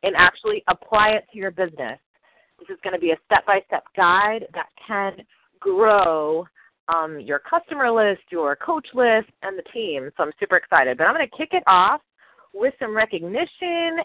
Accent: American